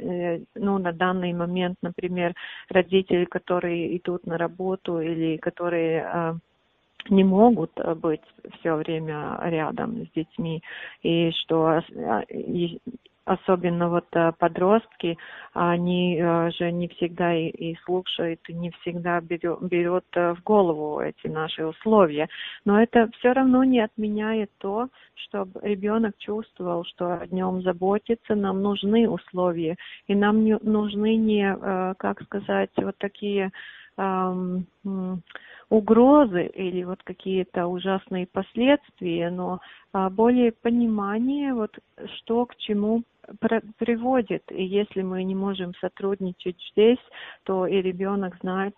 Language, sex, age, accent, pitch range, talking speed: Russian, female, 40-59, native, 175-210 Hz, 115 wpm